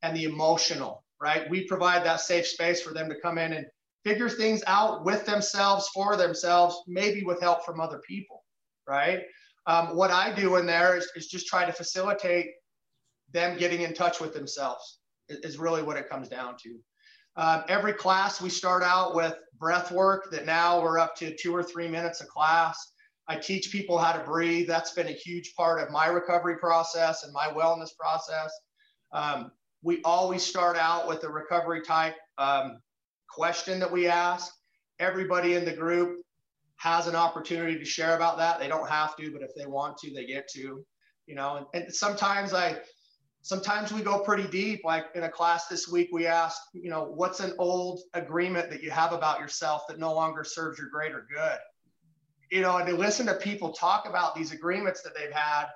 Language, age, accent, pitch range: English, 30-49, American, 160-180 Hz